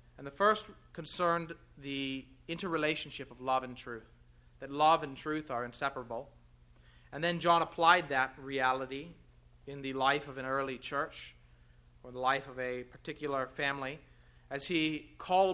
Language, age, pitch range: English, 30-49, 115-160 Hz